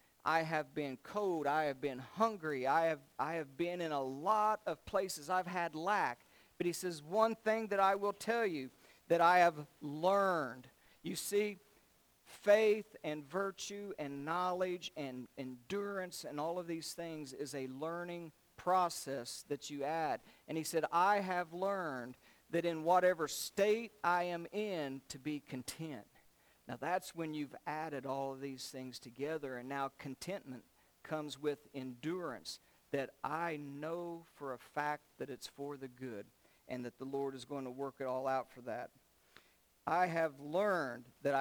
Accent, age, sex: American, 50-69, male